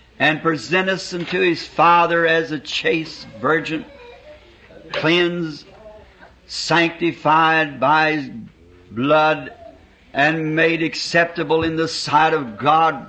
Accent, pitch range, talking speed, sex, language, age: American, 160-190 Hz, 105 wpm, male, English, 60-79